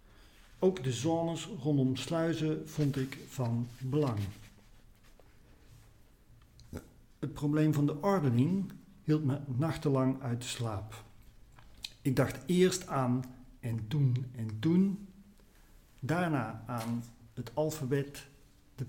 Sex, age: male, 50-69